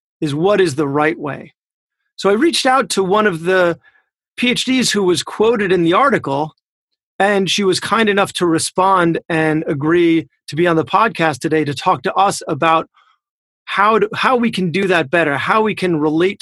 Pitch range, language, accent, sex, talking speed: 160-210 Hz, English, American, male, 195 wpm